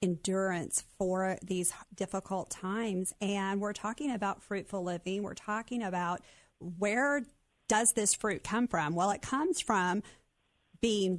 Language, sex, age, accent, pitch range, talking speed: English, female, 40-59, American, 180-220 Hz, 135 wpm